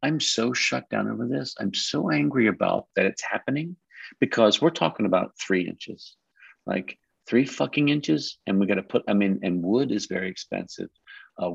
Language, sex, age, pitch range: English, male, 50-69, 95-130 Hz